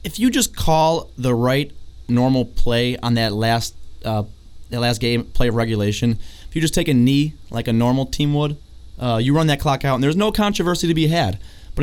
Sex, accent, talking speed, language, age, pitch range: male, American, 220 wpm, English, 20-39, 100-145 Hz